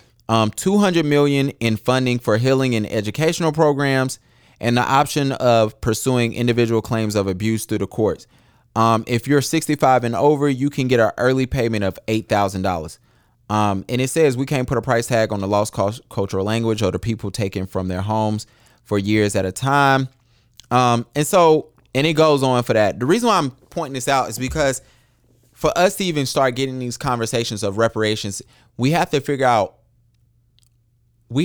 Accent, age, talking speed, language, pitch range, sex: American, 20-39, 185 wpm, English, 105-130 Hz, male